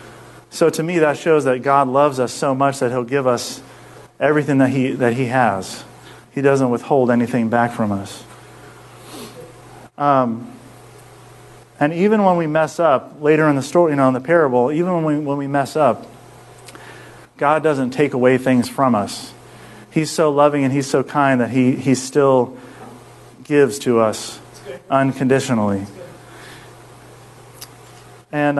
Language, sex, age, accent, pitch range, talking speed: English, male, 40-59, American, 125-155 Hz, 155 wpm